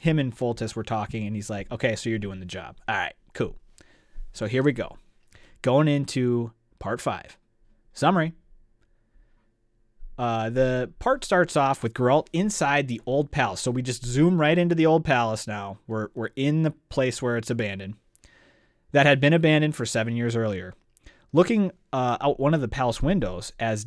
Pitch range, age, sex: 110-145 Hz, 30-49, male